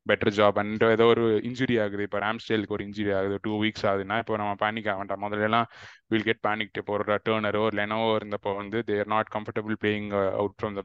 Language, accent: Tamil, native